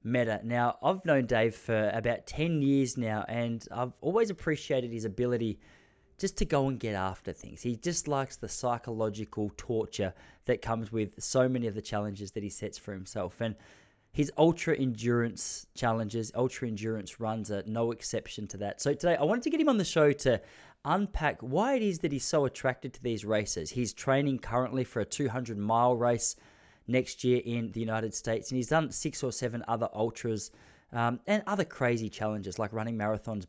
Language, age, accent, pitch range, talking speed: English, 20-39, Australian, 110-135 Hz, 190 wpm